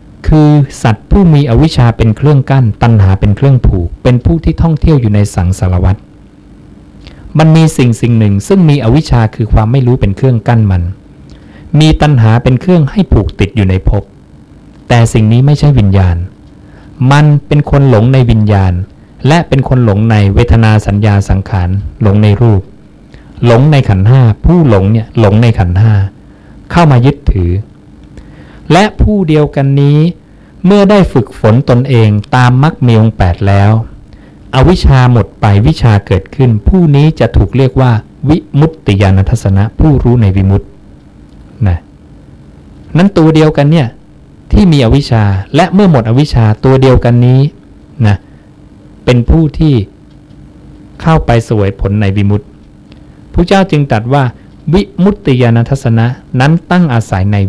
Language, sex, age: English, male, 60-79